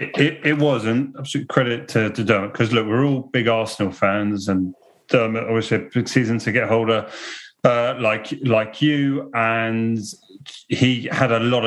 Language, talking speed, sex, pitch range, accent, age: English, 170 wpm, male, 105-120 Hz, British, 30-49